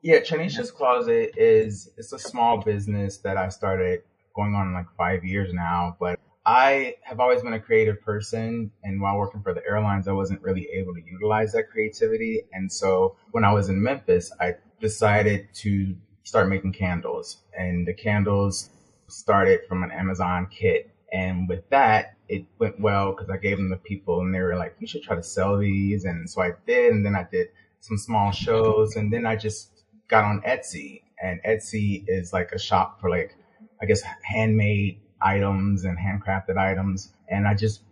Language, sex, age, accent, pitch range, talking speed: English, male, 30-49, American, 95-110 Hz, 190 wpm